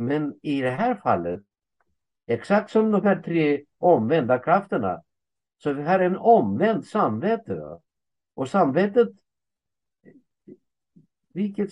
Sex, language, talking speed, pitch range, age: male, Swedish, 120 wpm, 145-205 Hz, 60-79